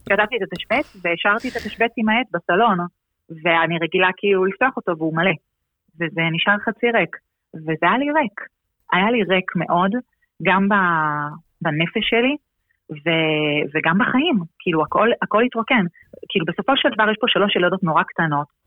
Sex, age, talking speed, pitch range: female, 30-49, 155 wpm, 160-220 Hz